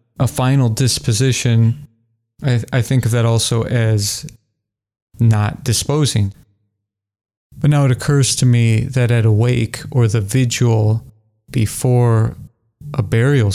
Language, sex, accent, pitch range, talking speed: English, male, American, 110-130 Hz, 125 wpm